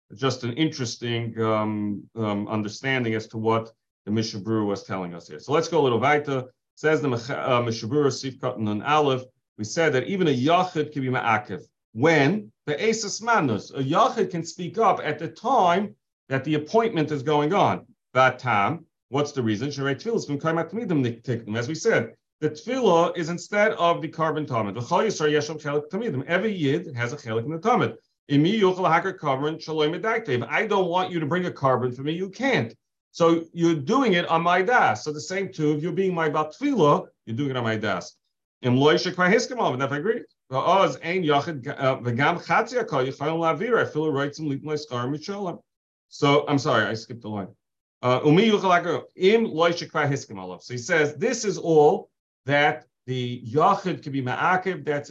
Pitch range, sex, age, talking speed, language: 125-170 Hz, male, 40-59, 150 wpm, English